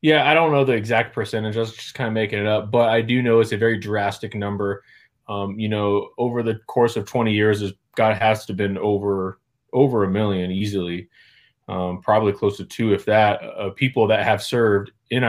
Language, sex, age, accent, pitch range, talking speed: English, male, 20-39, American, 100-115 Hz, 220 wpm